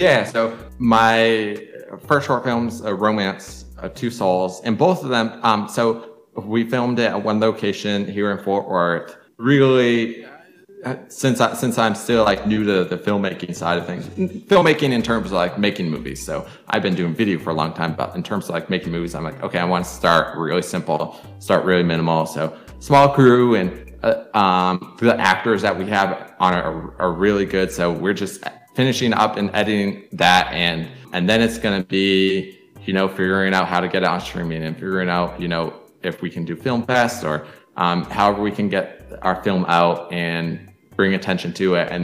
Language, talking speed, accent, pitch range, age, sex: English, 200 wpm, American, 90-115 Hz, 20-39, male